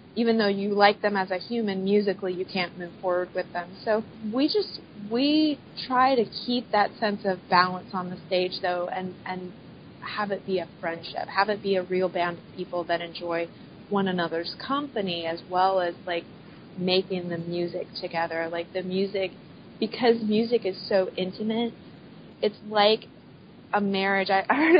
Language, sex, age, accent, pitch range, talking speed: English, female, 30-49, American, 180-210 Hz, 175 wpm